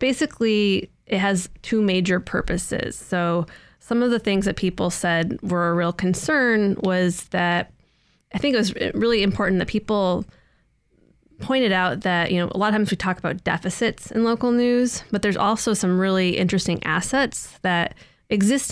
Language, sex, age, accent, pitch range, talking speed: English, female, 20-39, American, 180-220 Hz, 170 wpm